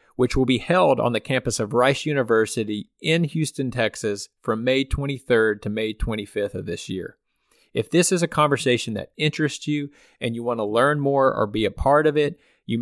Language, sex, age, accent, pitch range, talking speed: English, male, 40-59, American, 115-140 Hz, 200 wpm